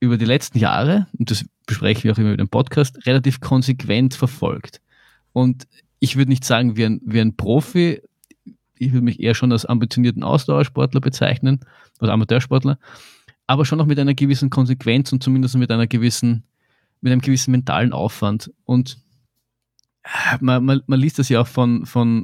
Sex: male